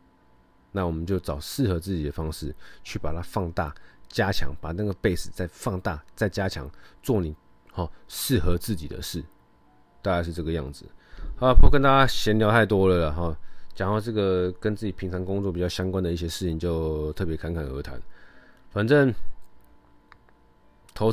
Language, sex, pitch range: Chinese, male, 85-105 Hz